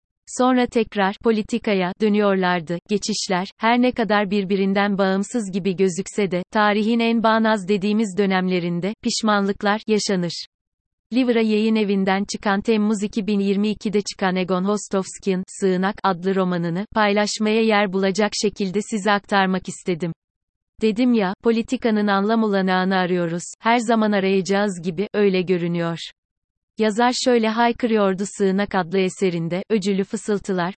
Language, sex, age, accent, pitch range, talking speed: Turkish, female, 30-49, native, 190-220 Hz, 115 wpm